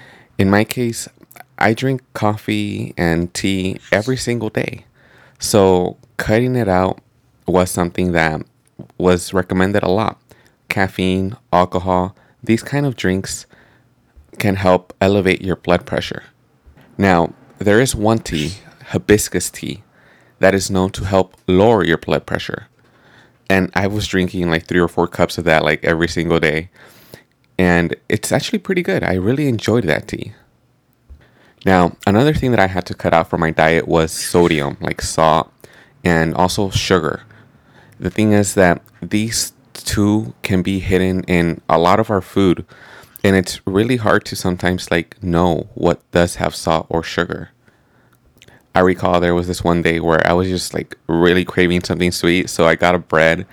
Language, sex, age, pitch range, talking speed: English, male, 30-49, 85-105 Hz, 160 wpm